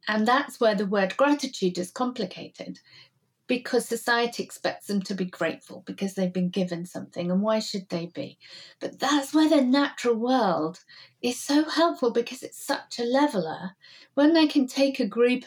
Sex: female